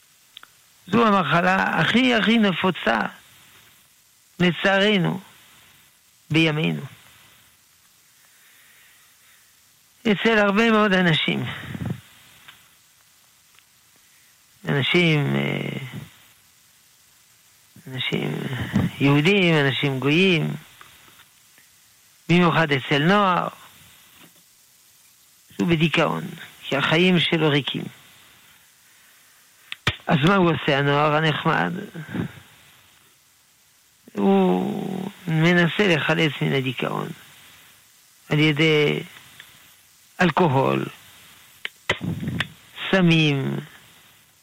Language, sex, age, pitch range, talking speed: Hebrew, male, 60-79, 140-185 Hz, 55 wpm